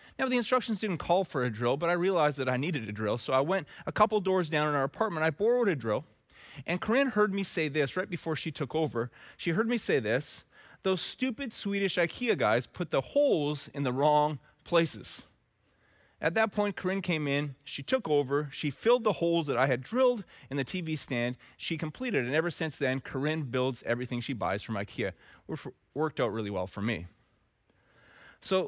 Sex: male